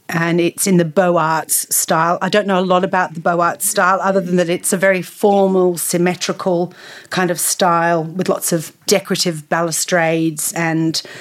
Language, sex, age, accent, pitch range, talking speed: English, female, 40-59, Australian, 165-195 Hz, 180 wpm